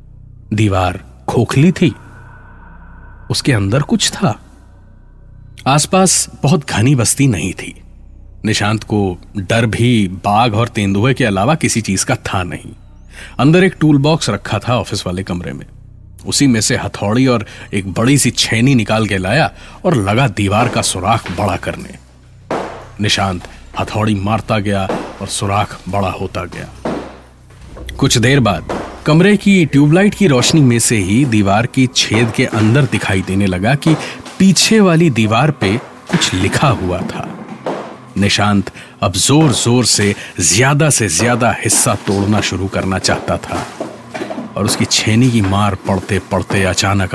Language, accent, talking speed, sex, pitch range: Hindi, native, 145 wpm, male, 95-125 Hz